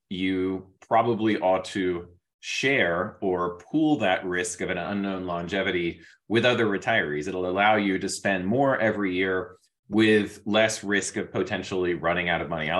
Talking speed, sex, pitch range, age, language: 160 wpm, male, 95-110 Hz, 30-49, English